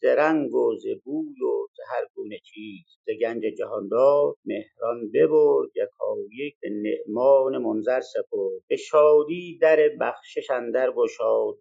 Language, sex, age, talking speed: Persian, male, 50-69, 135 wpm